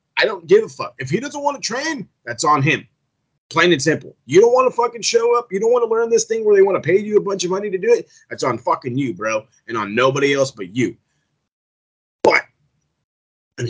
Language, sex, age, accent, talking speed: English, male, 30-49, American, 250 wpm